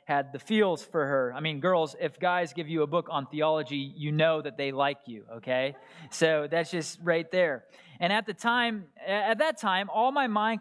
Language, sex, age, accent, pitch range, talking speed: English, male, 20-39, American, 150-235 Hz, 215 wpm